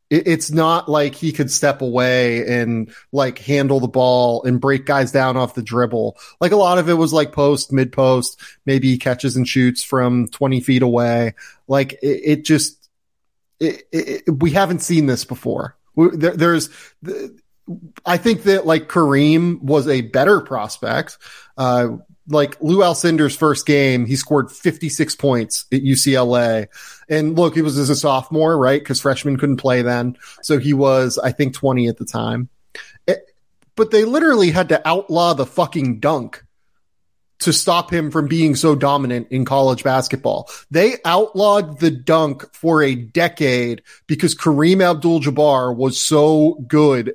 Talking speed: 155 wpm